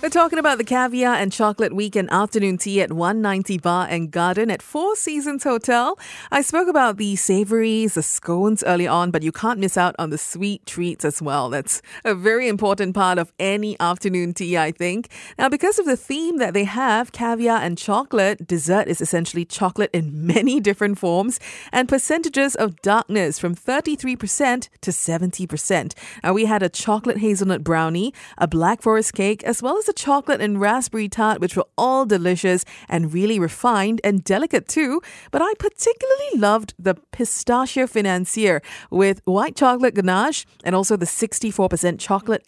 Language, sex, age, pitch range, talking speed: English, female, 30-49, 175-240 Hz, 175 wpm